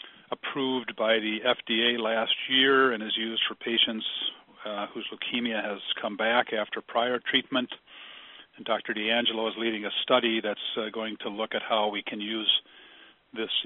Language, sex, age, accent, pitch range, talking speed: English, male, 50-69, American, 110-135 Hz, 165 wpm